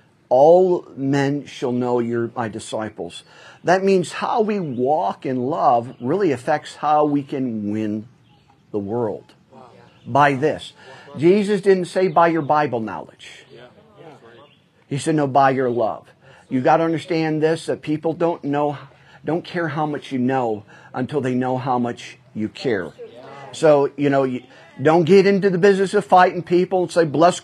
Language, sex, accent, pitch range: English, male, American, 125-165 Hz